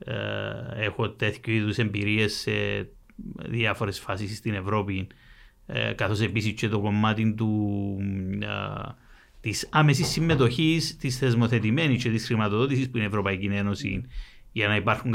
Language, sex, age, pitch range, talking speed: Greek, male, 30-49, 105-130 Hz, 125 wpm